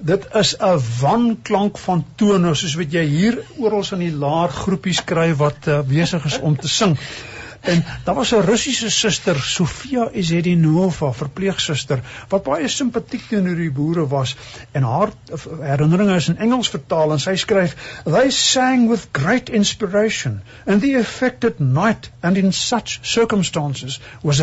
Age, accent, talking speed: 60-79, Dutch, 155 wpm